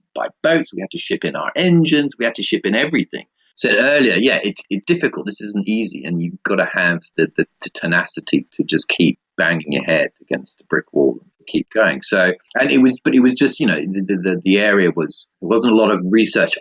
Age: 40-59